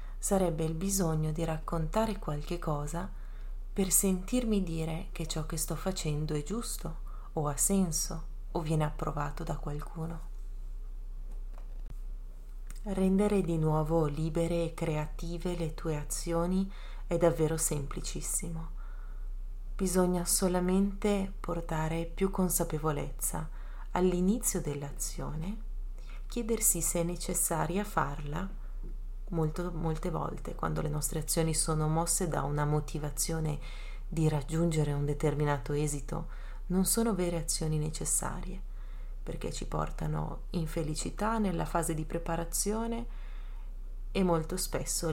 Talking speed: 110 wpm